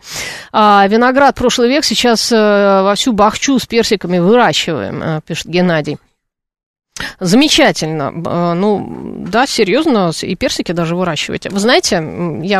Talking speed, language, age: 110 wpm, Russian, 30-49